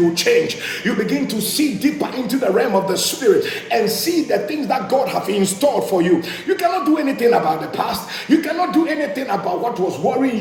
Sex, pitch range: male, 225-355 Hz